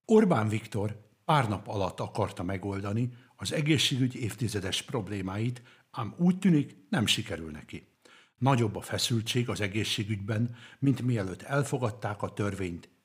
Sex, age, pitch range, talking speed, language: male, 60-79, 105-135 Hz, 125 wpm, Hungarian